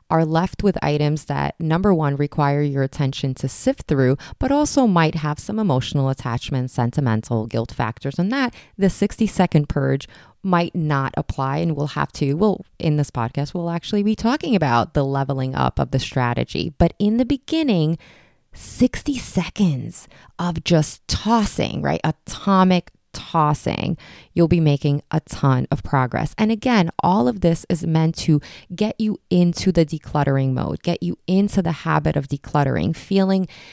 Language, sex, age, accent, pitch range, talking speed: English, female, 20-39, American, 145-190 Hz, 160 wpm